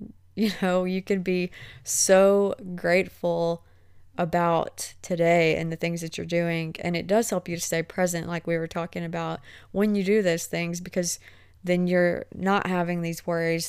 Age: 20-39